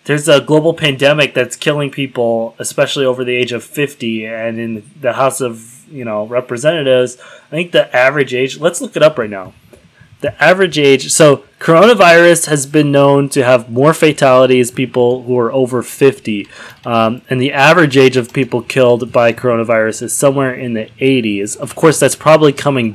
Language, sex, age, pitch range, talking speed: English, male, 20-39, 115-155 Hz, 180 wpm